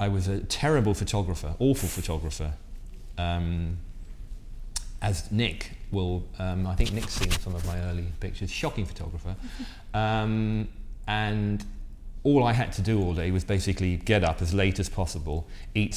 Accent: British